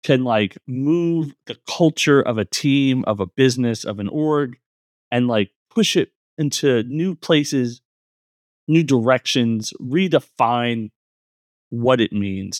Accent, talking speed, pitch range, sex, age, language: American, 130 wpm, 110-140 Hz, male, 30-49, English